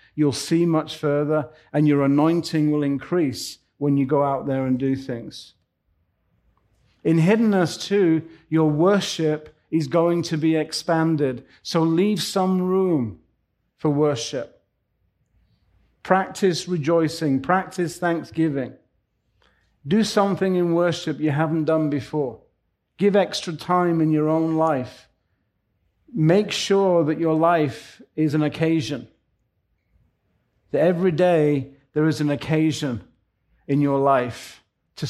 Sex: male